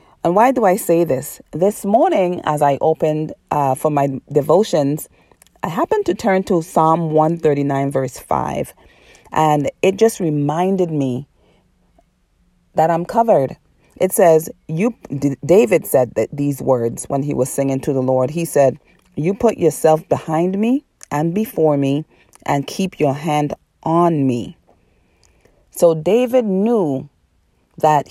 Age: 40-59